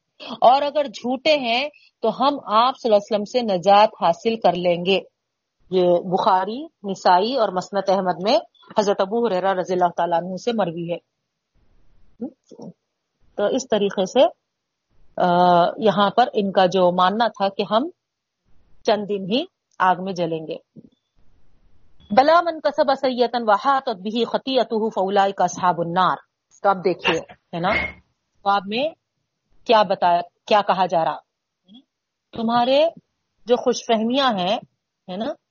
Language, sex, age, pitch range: Urdu, female, 40-59, 185-250 Hz